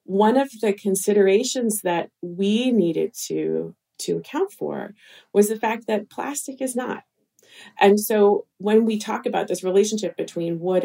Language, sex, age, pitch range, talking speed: English, female, 30-49, 170-210 Hz, 155 wpm